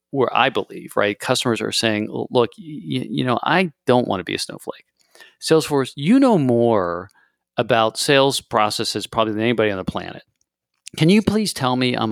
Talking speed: 185 wpm